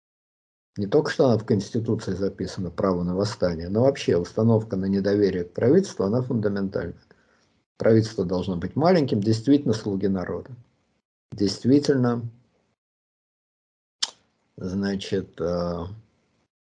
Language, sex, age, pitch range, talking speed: Russian, male, 50-69, 95-125 Hz, 100 wpm